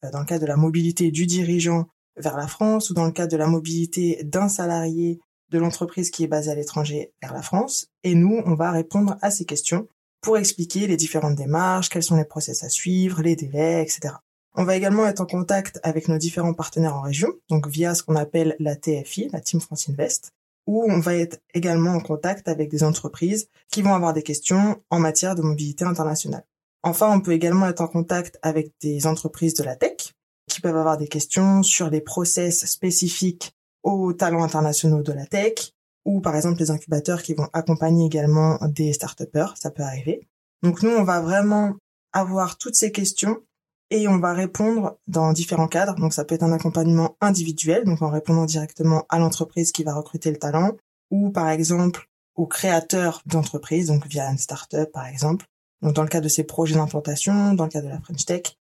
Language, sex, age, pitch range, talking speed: French, female, 20-39, 155-180 Hz, 205 wpm